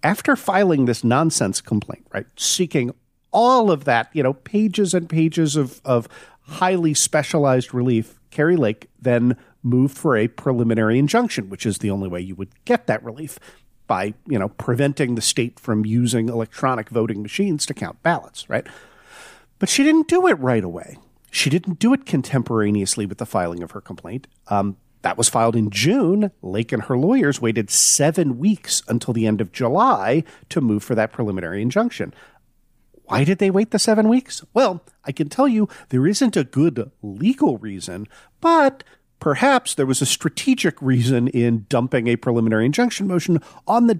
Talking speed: 175 wpm